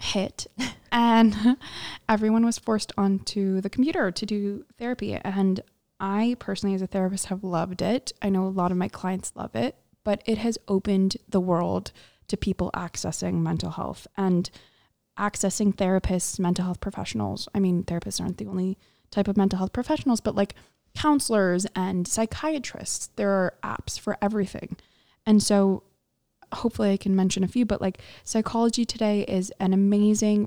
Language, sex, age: English, female, 20-39